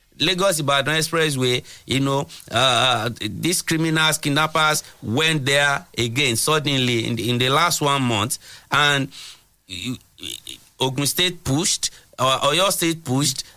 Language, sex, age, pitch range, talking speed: English, male, 50-69, 140-180 Hz, 130 wpm